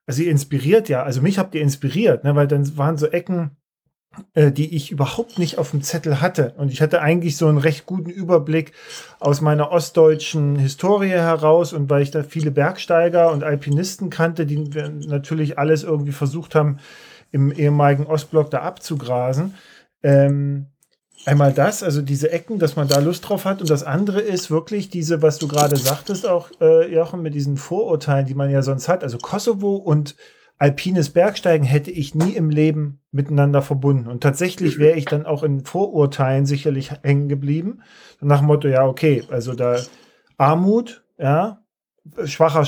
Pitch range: 145-170 Hz